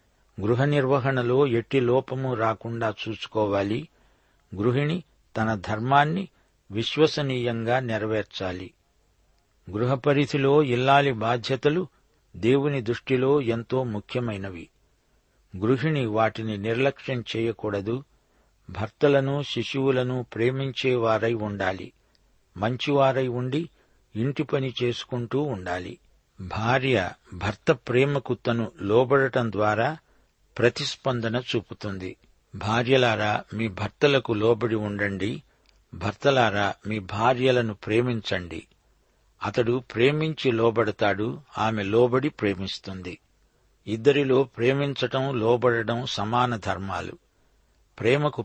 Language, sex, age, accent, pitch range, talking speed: Telugu, male, 60-79, native, 105-135 Hz, 75 wpm